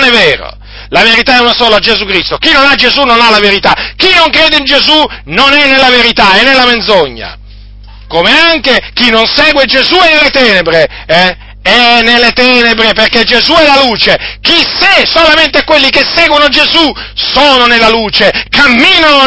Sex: male